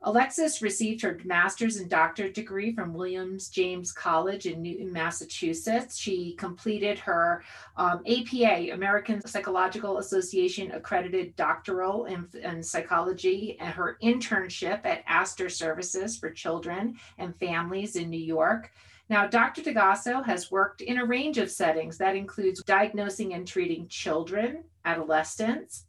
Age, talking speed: 40-59, 130 wpm